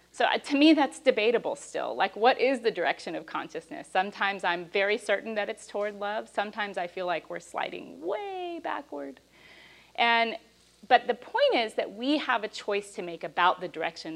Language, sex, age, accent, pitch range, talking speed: English, female, 40-59, American, 180-245 Hz, 185 wpm